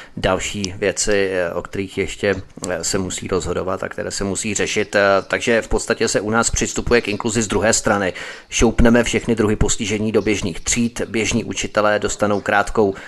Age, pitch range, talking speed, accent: 30-49, 95-120 Hz, 165 wpm, native